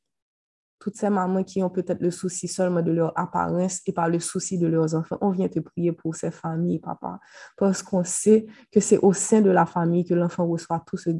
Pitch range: 170-190 Hz